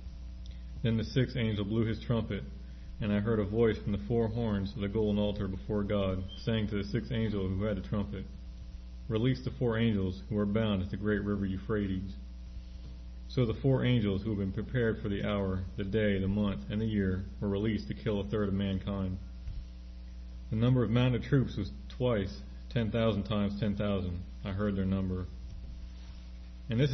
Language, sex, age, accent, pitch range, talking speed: English, male, 40-59, American, 85-110 Hz, 195 wpm